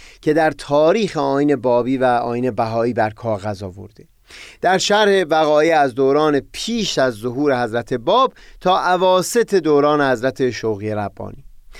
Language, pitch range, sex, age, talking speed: Persian, 125-175 Hz, male, 30-49, 135 wpm